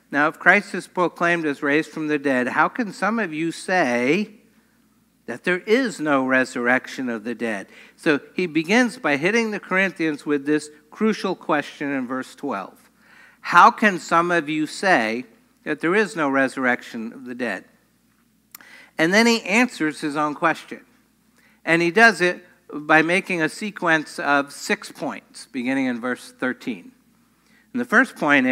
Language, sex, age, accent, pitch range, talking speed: English, male, 60-79, American, 145-235 Hz, 165 wpm